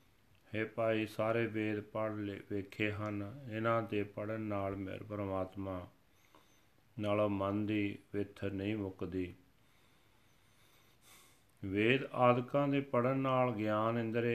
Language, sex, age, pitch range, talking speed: Punjabi, male, 40-59, 100-115 Hz, 115 wpm